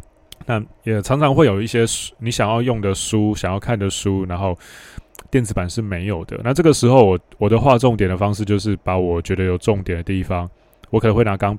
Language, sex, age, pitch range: Chinese, male, 20-39, 95-110 Hz